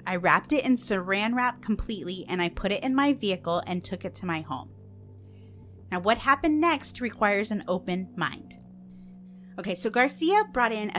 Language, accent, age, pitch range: English, American, 30-49, 165-215 Hz